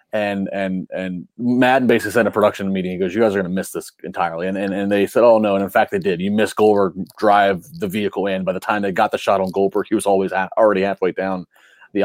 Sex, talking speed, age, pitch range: male, 275 wpm, 30-49, 95-130 Hz